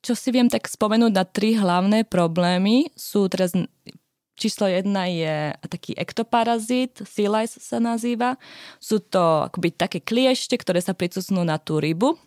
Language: Slovak